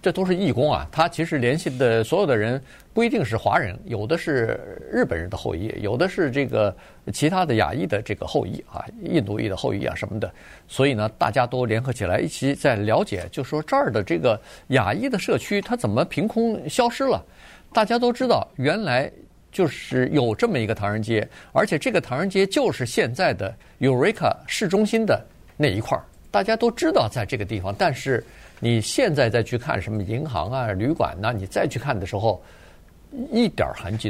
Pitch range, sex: 105-155 Hz, male